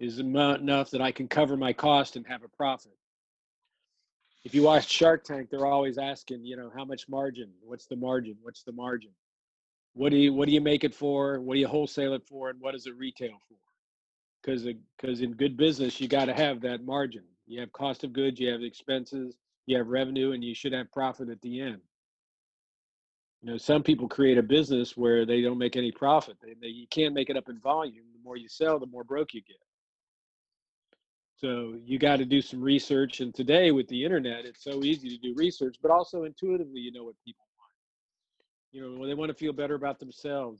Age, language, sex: 40-59, English, male